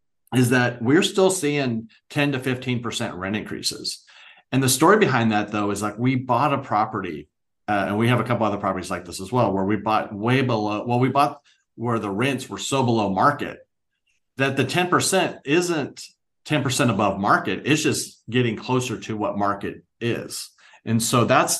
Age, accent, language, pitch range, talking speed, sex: 40-59, American, English, 105-130 Hz, 185 wpm, male